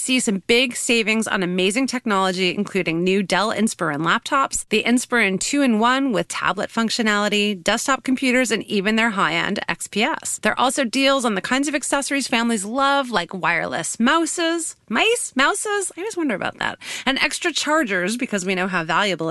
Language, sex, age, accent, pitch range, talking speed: English, female, 30-49, American, 190-255 Hz, 170 wpm